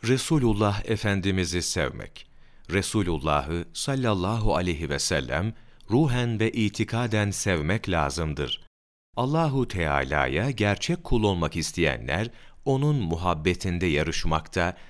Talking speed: 90 wpm